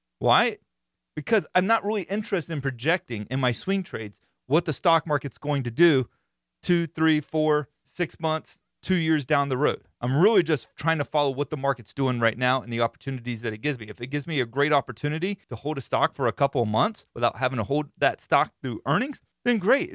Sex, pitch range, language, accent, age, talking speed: male, 110-155 Hz, English, American, 30-49, 225 wpm